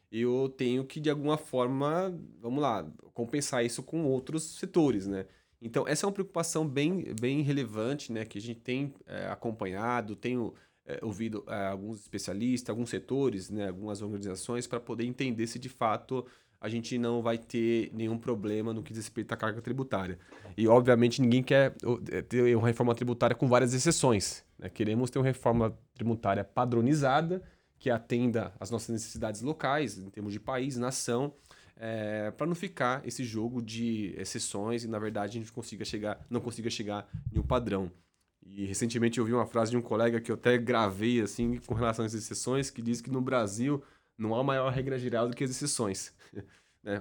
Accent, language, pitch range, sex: Brazilian, Portuguese, 110-130 Hz, male